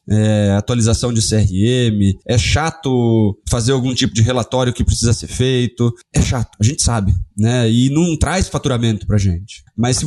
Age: 20-39